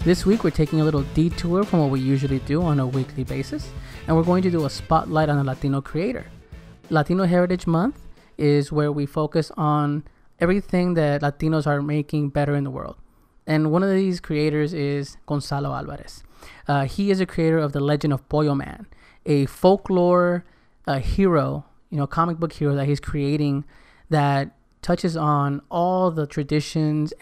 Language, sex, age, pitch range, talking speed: English, male, 20-39, 145-160 Hz, 175 wpm